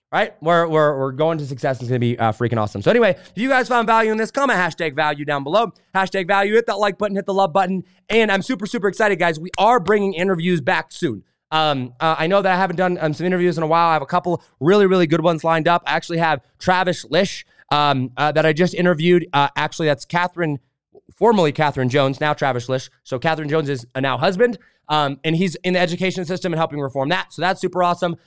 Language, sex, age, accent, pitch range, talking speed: English, male, 20-39, American, 140-185 Hz, 250 wpm